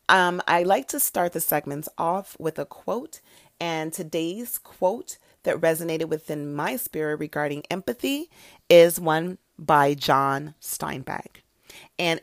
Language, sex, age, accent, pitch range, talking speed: English, female, 30-49, American, 150-200 Hz, 130 wpm